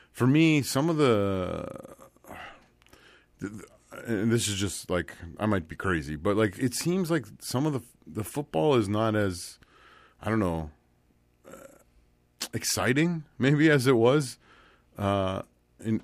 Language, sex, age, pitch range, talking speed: English, male, 30-49, 90-115 Hz, 140 wpm